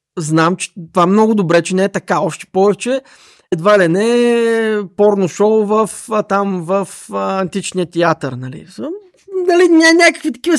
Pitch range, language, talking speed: 165-225 Hz, Bulgarian, 155 wpm